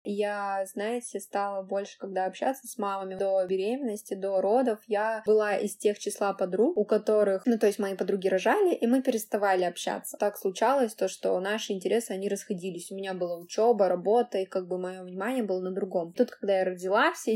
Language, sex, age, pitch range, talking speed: Russian, female, 20-39, 190-215 Hz, 195 wpm